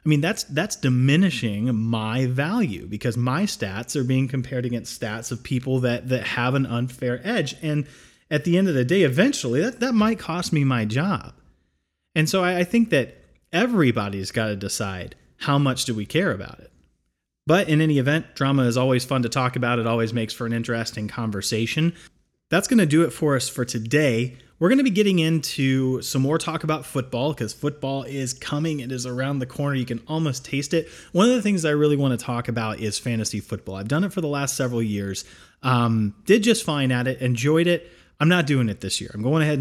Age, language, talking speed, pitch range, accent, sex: 30-49, English, 220 wpm, 120-150 Hz, American, male